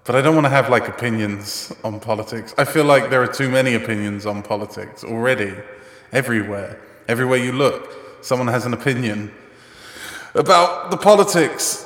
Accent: British